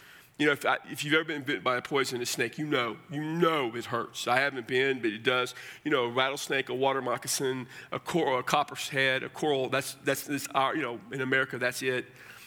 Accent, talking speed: American, 235 wpm